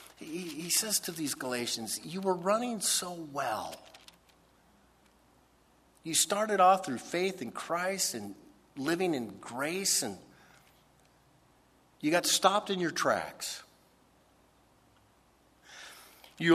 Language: English